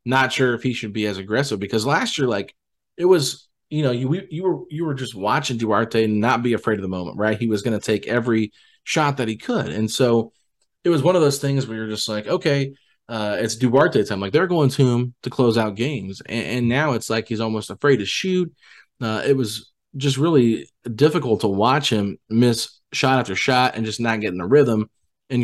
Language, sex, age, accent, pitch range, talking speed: English, male, 20-39, American, 110-135 Hz, 230 wpm